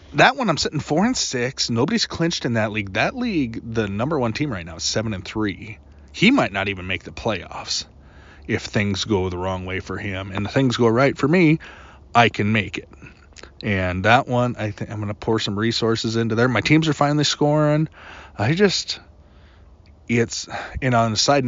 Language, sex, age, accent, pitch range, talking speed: English, male, 20-39, American, 95-120 Hz, 210 wpm